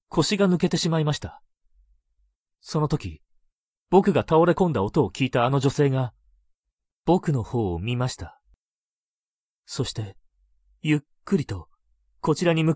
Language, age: Japanese, 40-59